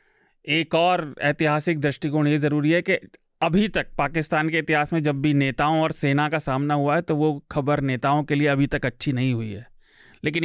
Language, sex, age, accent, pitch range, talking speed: Hindi, male, 30-49, native, 135-165 Hz, 205 wpm